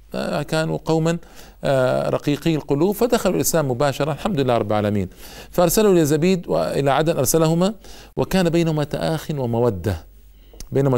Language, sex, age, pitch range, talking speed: Arabic, male, 50-69, 125-155 Hz, 115 wpm